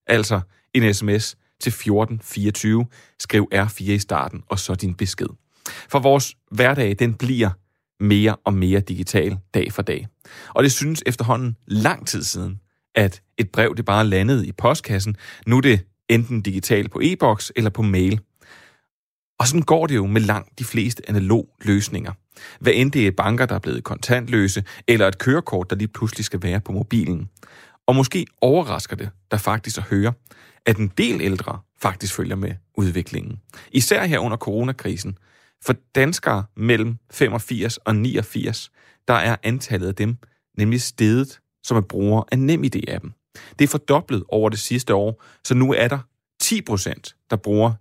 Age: 30-49